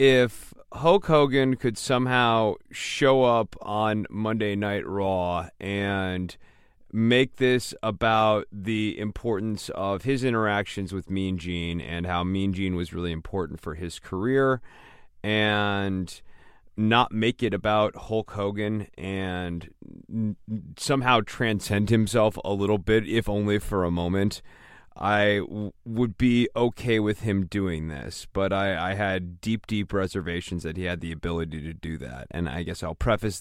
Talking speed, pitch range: 145 wpm, 95-130 Hz